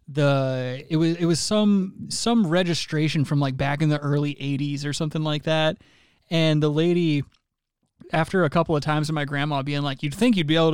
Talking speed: 205 wpm